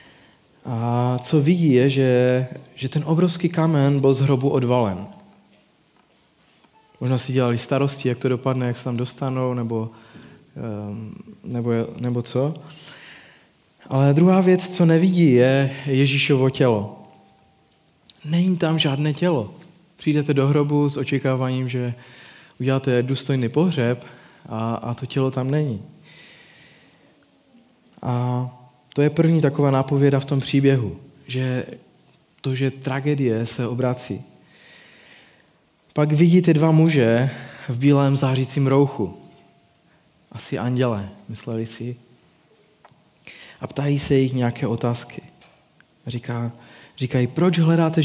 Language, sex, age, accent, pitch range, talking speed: Czech, male, 20-39, native, 125-155 Hz, 115 wpm